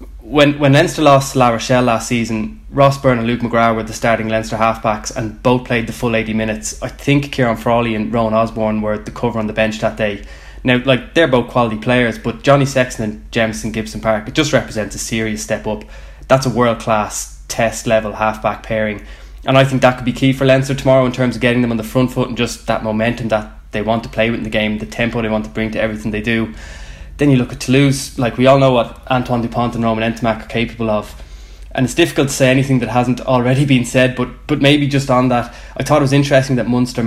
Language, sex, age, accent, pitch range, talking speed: English, male, 20-39, Irish, 110-130 Hz, 245 wpm